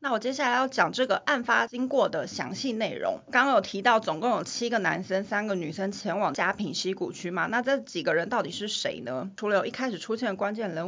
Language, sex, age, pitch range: Chinese, female, 30-49, 195-250 Hz